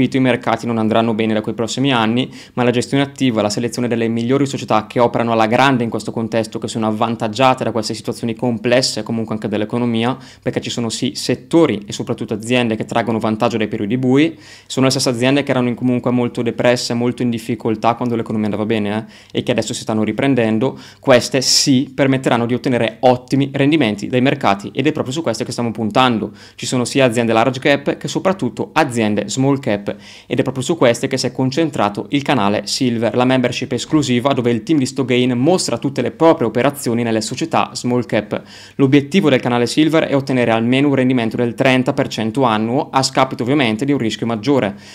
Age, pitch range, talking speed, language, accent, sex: 20-39, 115-135 Hz, 200 wpm, Italian, native, male